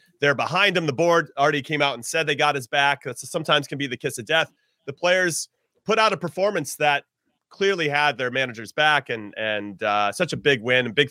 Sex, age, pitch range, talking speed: male, 30-49, 125-170 Hz, 230 wpm